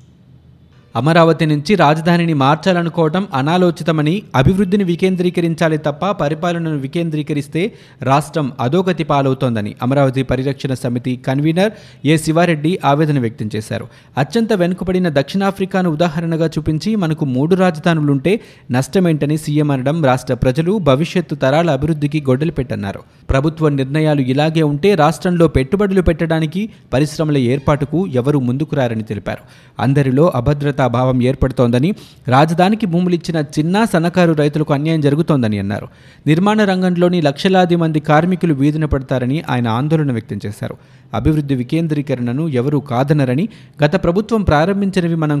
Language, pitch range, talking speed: Telugu, 135-170 Hz, 110 wpm